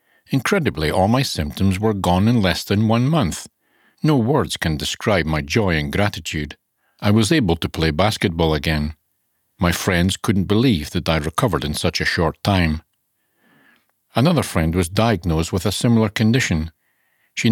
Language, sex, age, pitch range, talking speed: English, male, 60-79, 80-110 Hz, 160 wpm